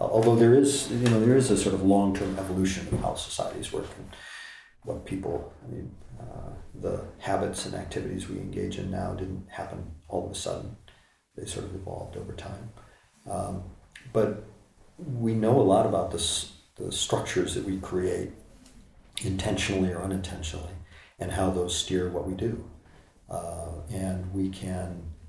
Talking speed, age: 165 wpm, 40-59